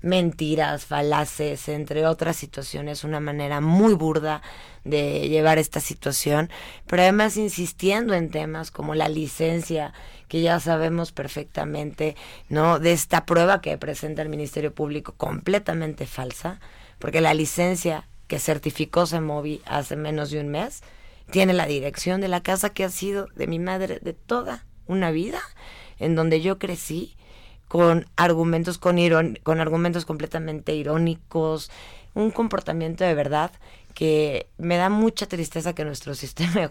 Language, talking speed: Spanish, 145 wpm